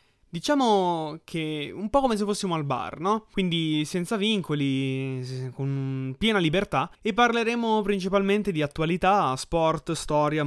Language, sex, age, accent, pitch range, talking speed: Italian, male, 20-39, native, 135-180 Hz, 130 wpm